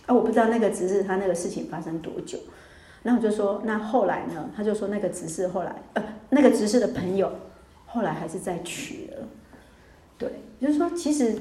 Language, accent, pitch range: Chinese, American, 185-225 Hz